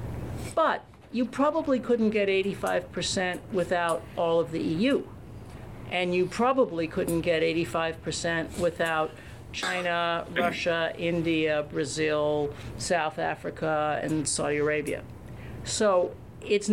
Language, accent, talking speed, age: English, American, 105 wpm, 50-69